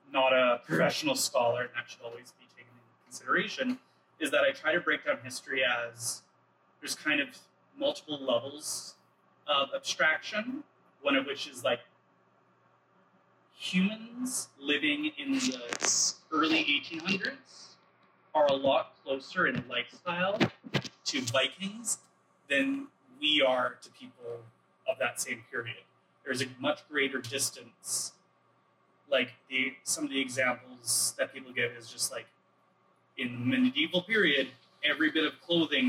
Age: 30-49